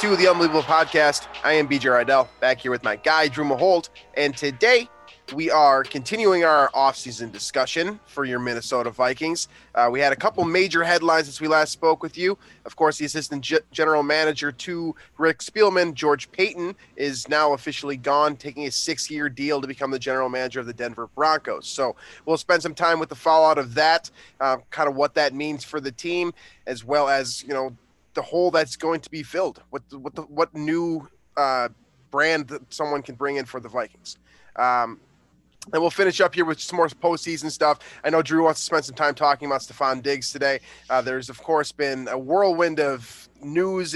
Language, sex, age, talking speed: English, male, 20-39, 200 wpm